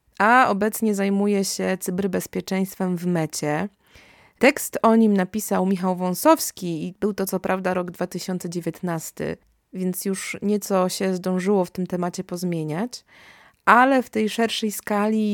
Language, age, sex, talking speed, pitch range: Polish, 20-39, female, 135 wpm, 180-210 Hz